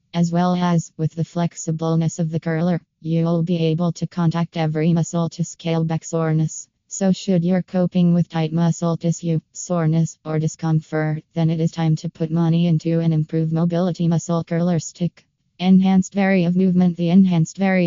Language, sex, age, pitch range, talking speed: English, female, 20-39, 165-180 Hz, 175 wpm